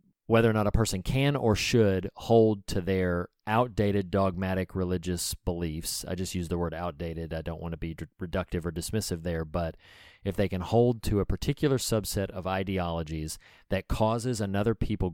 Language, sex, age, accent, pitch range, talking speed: English, male, 30-49, American, 90-105 Hz, 180 wpm